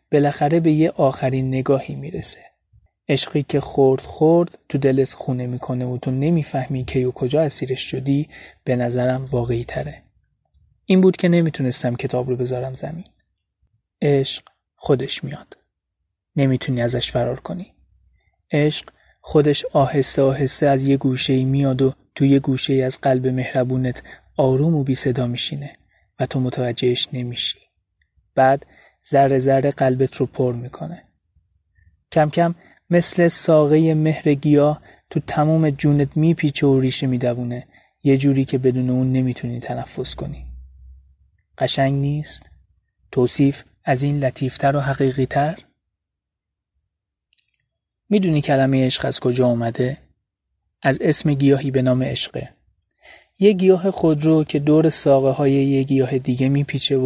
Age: 30-49